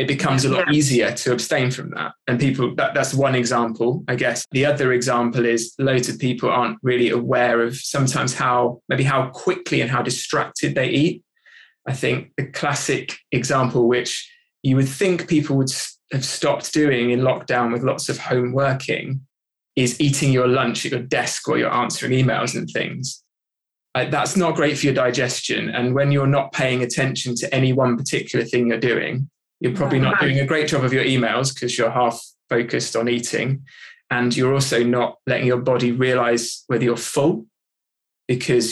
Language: English